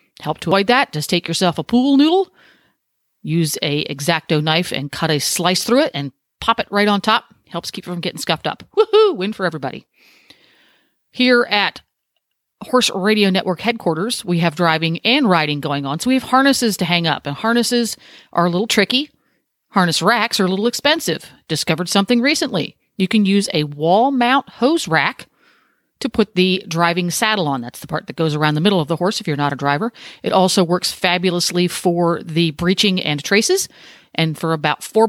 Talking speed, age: 195 wpm, 40-59